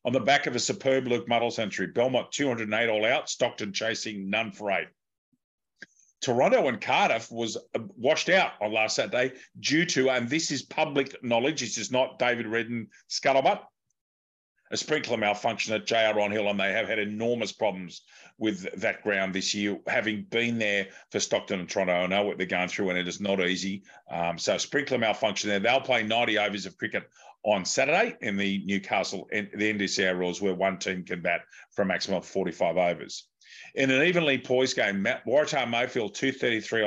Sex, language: male, English